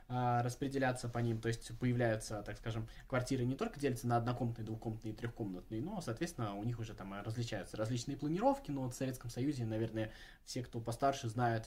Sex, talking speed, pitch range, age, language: male, 180 wpm, 110-140 Hz, 20-39, Russian